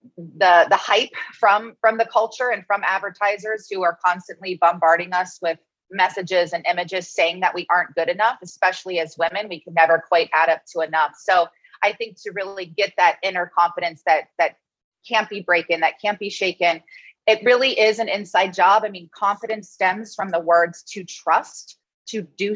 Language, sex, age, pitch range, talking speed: English, female, 30-49, 175-220 Hz, 190 wpm